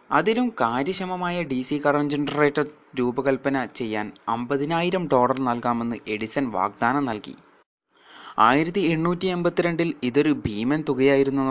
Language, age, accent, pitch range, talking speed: Malayalam, 20-39, native, 125-175 Hz, 110 wpm